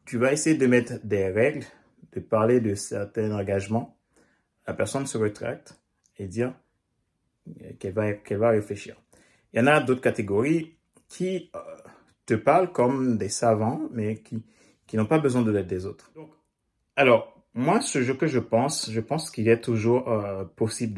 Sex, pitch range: male, 105-125 Hz